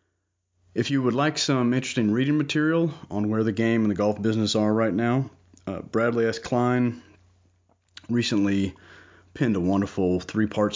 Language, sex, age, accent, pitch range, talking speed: English, male, 30-49, American, 90-110 Hz, 155 wpm